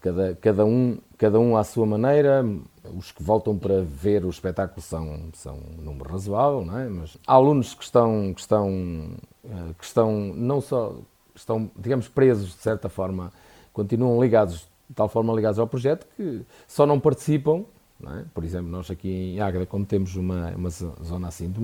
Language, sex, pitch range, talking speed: Portuguese, male, 90-120 Hz, 185 wpm